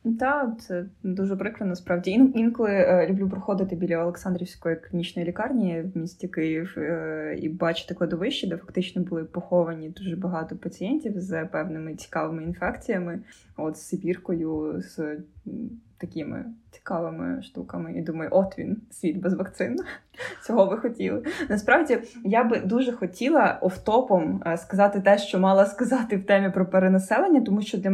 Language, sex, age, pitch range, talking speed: Ukrainian, female, 20-39, 175-210 Hz, 145 wpm